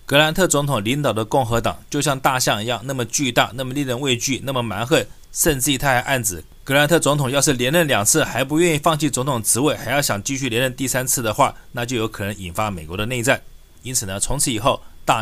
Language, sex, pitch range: Chinese, male, 115-140 Hz